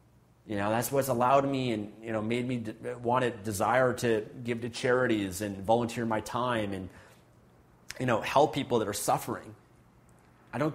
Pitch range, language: 110-135 Hz, English